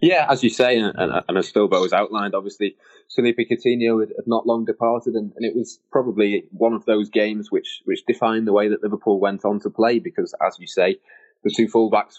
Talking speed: 220 wpm